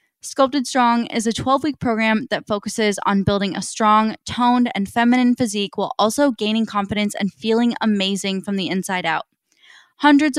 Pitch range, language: 200-245 Hz, English